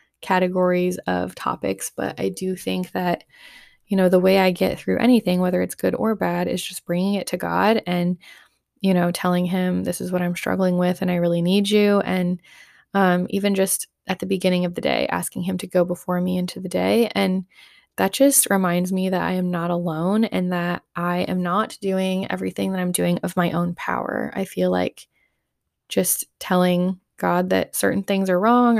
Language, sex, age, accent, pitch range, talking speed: English, female, 20-39, American, 170-190 Hz, 200 wpm